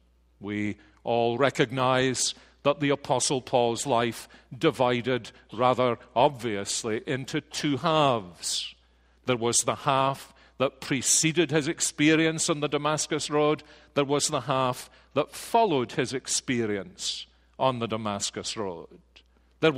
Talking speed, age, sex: 120 wpm, 50-69, male